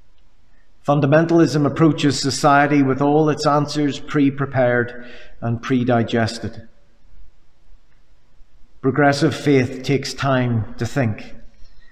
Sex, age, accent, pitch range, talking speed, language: male, 50-69, British, 100-135 Hz, 80 wpm, English